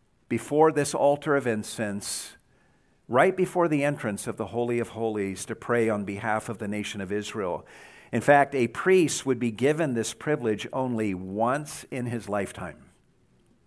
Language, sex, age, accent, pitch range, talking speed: English, male, 50-69, American, 115-150 Hz, 160 wpm